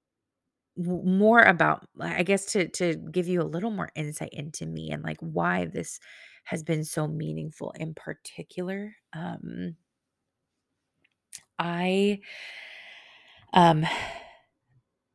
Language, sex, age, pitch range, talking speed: English, female, 30-49, 165-210 Hz, 105 wpm